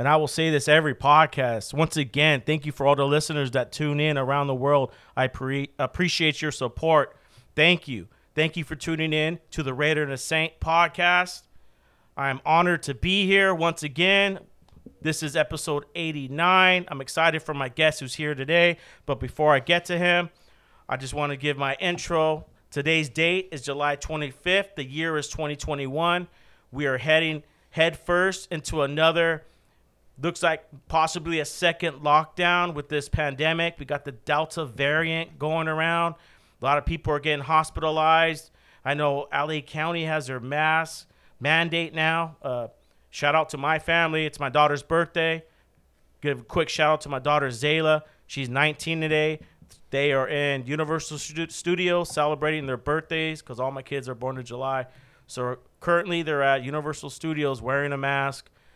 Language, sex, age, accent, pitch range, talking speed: English, male, 40-59, American, 140-165 Hz, 170 wpm